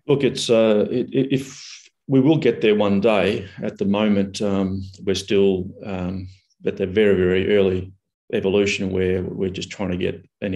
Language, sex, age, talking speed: English, male, 30-49, 170 wpm